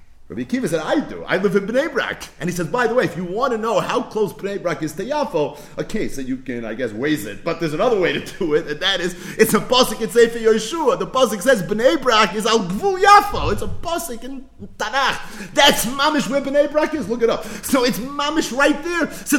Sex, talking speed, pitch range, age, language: male, 250 wpm, 150-240 Hz, 30-49, English